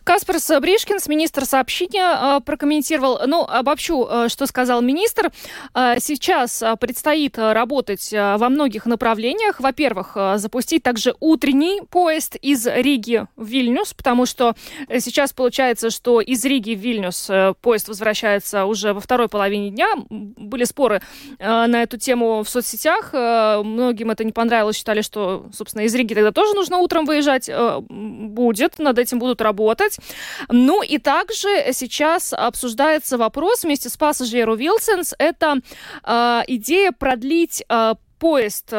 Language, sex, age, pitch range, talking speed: Russian, female, 20-39, 230-300 Hz, 125 wpm